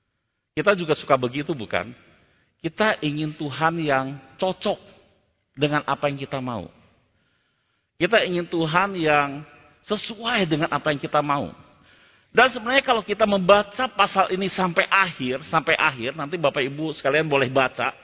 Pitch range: 130-215 Hz